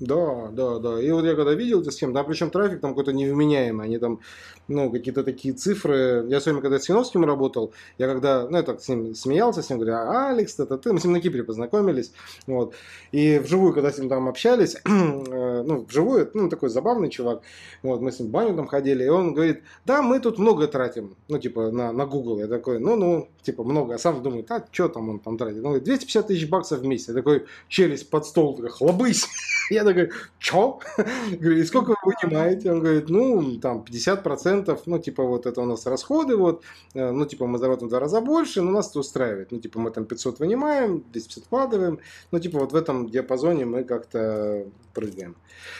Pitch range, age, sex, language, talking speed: 125-170 Hz, 20-39, male, Russian, 210 wpm